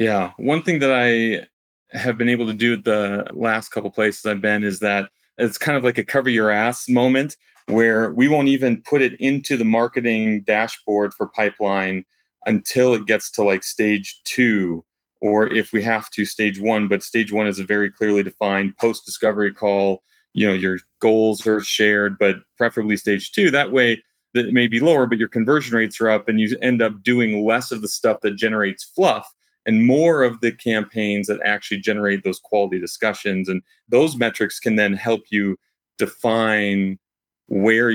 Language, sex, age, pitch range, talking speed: English, male, 30-49, 105-120 Hz, 185 wpm